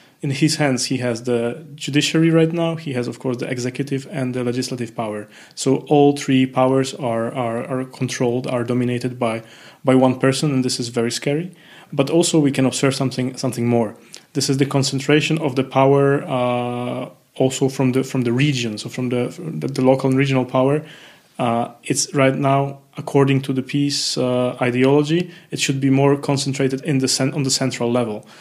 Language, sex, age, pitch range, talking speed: English, male, 20-39, 125-140 Hz, 195 wpm